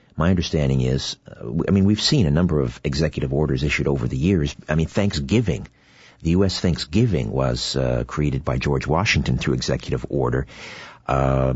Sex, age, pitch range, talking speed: male, 50-69, 70-95 Hz, 170 wpm